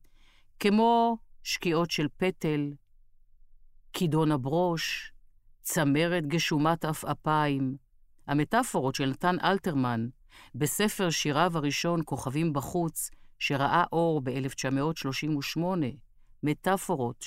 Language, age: Hebrew, 50-69